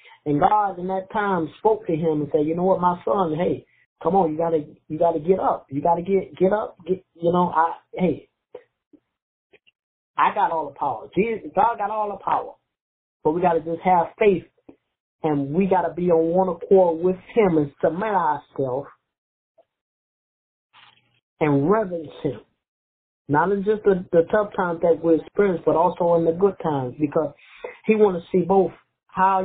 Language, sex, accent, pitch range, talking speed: English, male, American, 170-220 Hz, 175 wpm